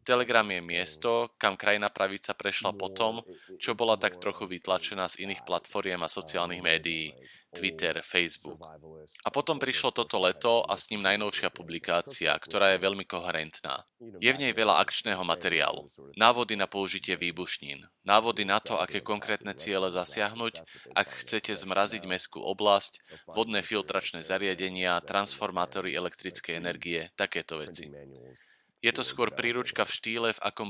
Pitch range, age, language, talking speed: 90-105 Hz, 30-49, Slovak, 145 wpm